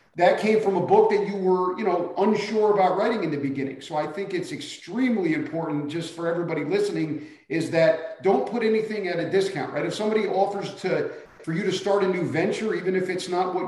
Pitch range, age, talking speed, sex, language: 160-200 Hz, 40-59, 225 wpm, male, English